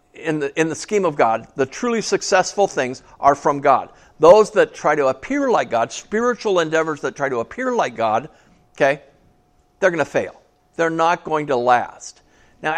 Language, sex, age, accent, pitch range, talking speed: English, male, 50-69, American, 120-165 Hz, 190 wpm